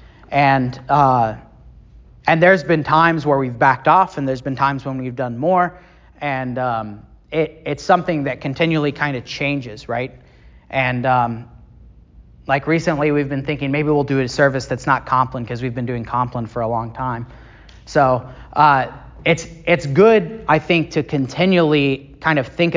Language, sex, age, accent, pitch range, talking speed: English, male, 30-49, American, 130-165 Hz, 170 wpm